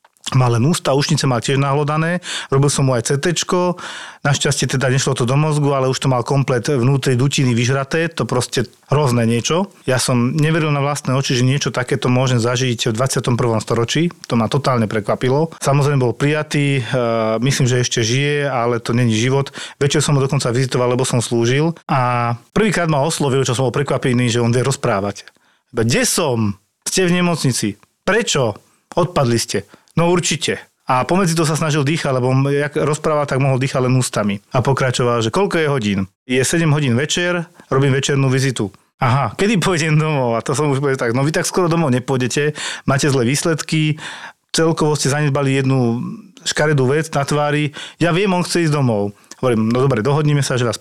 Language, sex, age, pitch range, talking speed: Slovak, male, 40-59, 125-150 Hz, 180 wpm